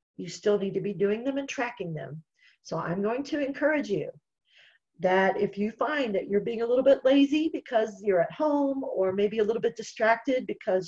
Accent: American